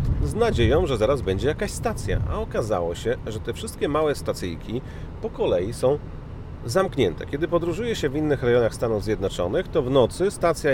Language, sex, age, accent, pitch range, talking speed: Polish, male, 40-59, native, 100-135 Hz, 175 wpm